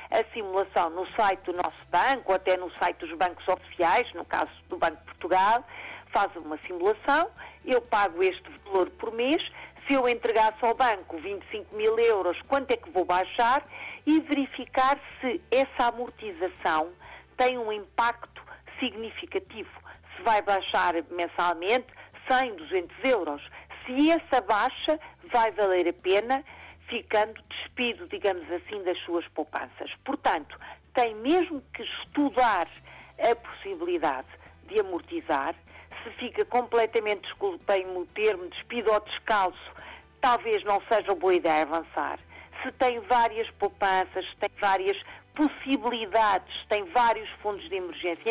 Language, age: Portuguese, 50-69